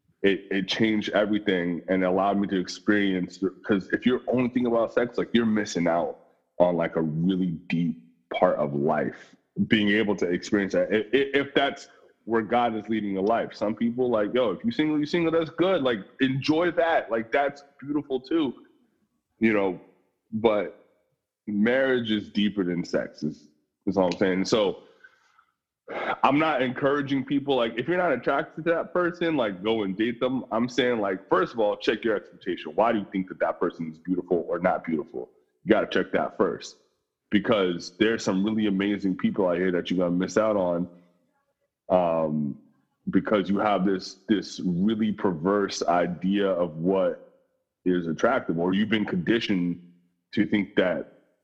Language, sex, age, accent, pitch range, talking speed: English, male, 20-39, American, 90-130 Hz, 175 wpm